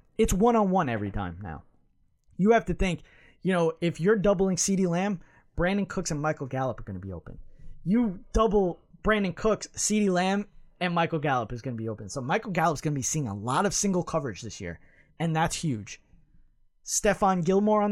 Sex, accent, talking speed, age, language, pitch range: male, American, 205 wpm, 20-39, English, 145-200 Hz